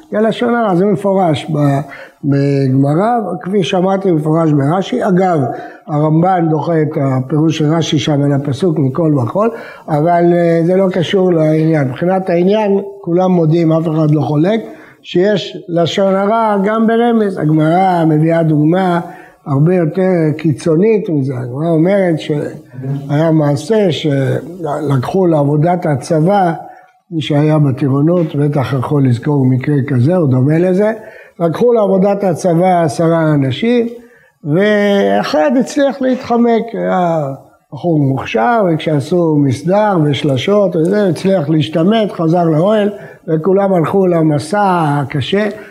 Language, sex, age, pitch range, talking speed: English, male, 60-79, 150-200 Hz, 110 wpm